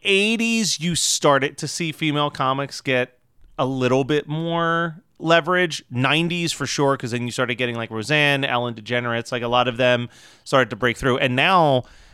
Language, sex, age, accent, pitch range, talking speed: English, male, 30-49, American, 120-145 Hz, 180 wpm